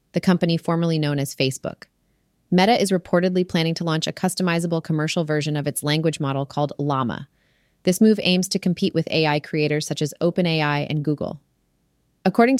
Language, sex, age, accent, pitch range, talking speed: English, female, 30-49, American, 150-180 Hz, 170 wpm